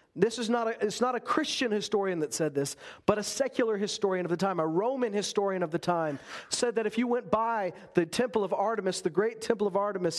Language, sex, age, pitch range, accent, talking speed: English, male, 40-59, 175-220 Hz, American, 235 wpm